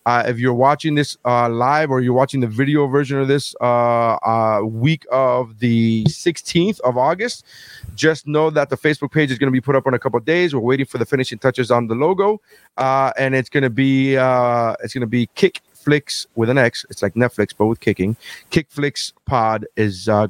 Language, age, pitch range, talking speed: English, 30-49, 120-140 Hz, 220 wpm